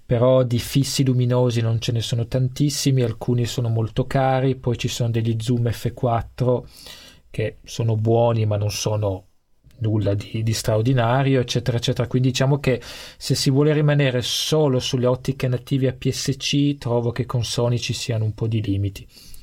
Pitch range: 110-130 Hz